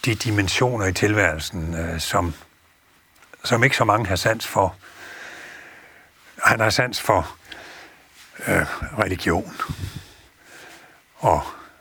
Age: 60-79